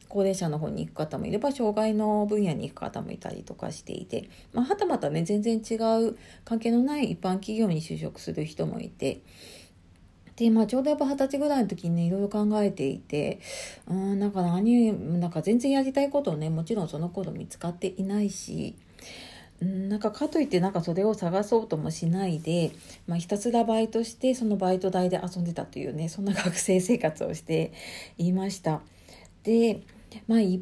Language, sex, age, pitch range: Japanese, female, 40-59, 165-225 Hz